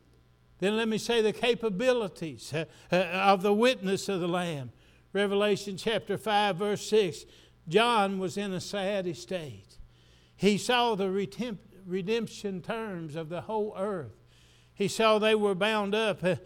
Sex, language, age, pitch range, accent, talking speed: male, English, 60-79, 150-205 Hz, American, 140 wpm